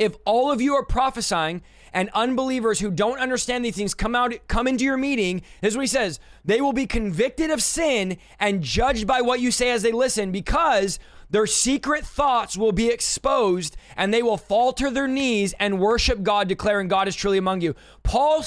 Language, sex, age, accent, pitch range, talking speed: English, male, 20-39, American, 205-255 Hz, 200 wpm